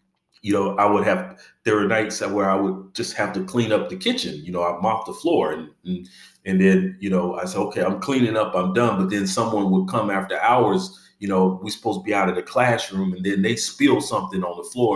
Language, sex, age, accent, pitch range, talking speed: English, male, 40-59, American, 95-150 Hz, 255 wpm